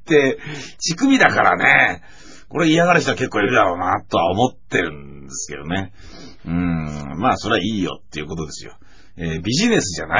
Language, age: Japanese, 40-59